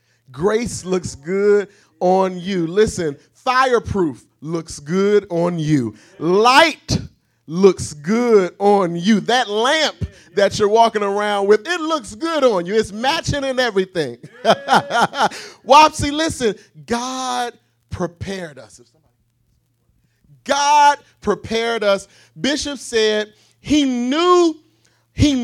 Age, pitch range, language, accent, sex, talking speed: 30-49, 160-230 Hz, English, American, male, 110 wpm